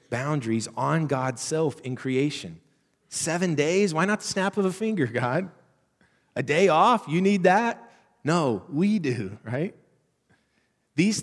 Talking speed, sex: 145 wpm, male